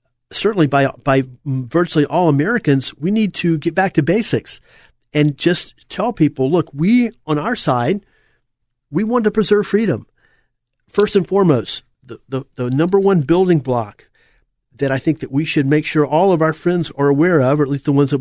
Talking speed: 190 wpm